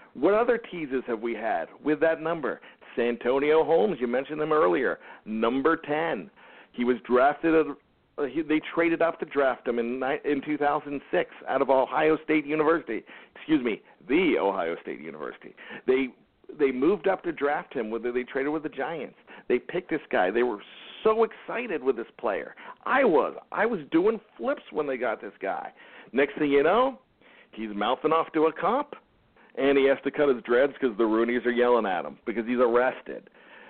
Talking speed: 180 wpm